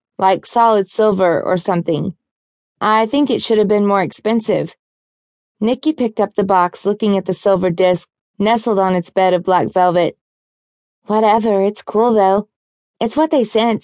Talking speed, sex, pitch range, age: 165 wpm, female, 180-220 Hz, 20-39